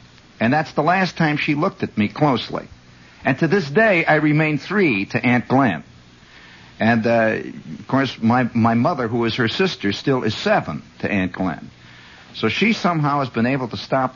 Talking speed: 190 wpm